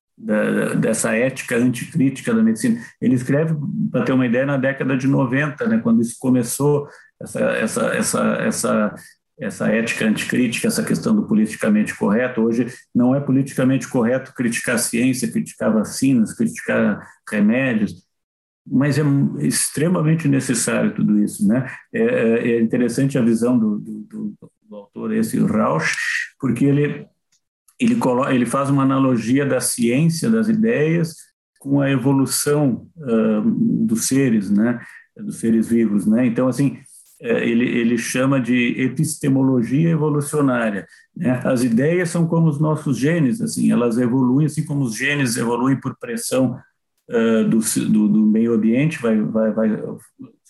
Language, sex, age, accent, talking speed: Portuguese, male, 50-69, Brazilian, 140 wpm